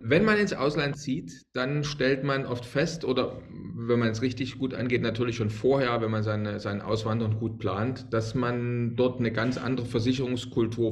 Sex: male